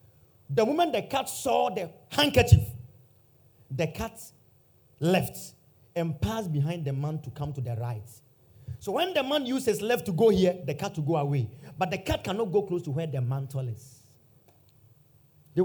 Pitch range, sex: 120-170 Hz, male